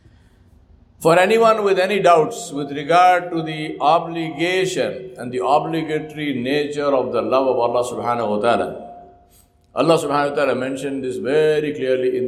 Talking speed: 150 wpm